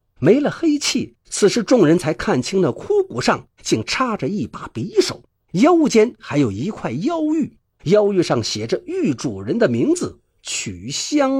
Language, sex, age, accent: Chinese, male, 50-69, native